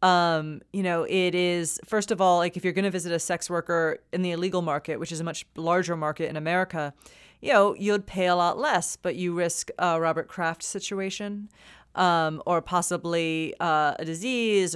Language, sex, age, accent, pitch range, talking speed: English, female, 30-49, American, 165-205 Hz, 200 wpm